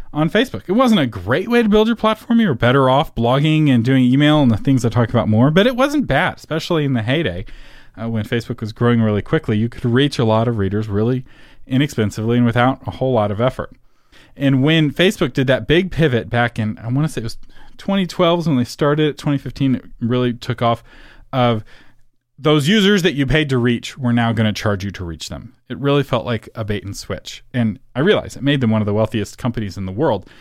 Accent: American